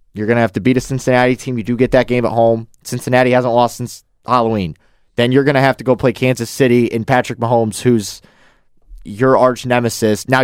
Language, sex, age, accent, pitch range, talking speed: English, male, 20-39, American, 105-130 Hz, 225 wpm